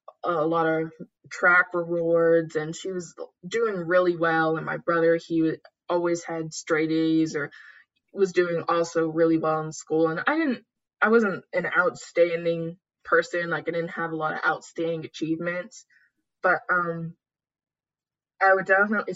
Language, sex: English, female